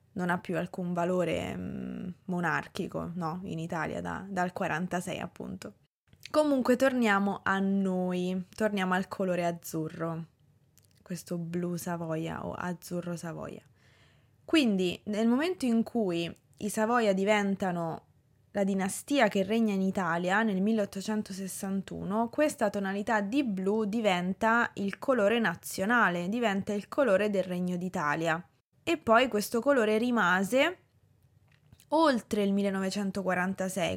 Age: 20-39